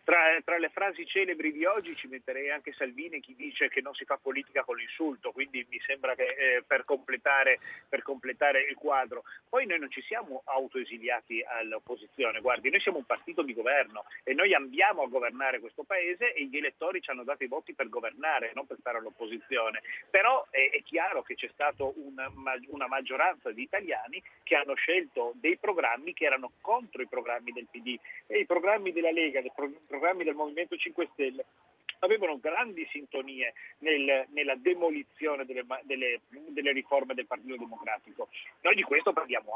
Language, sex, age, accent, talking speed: Italian, male, 40-59, native, 175 wpm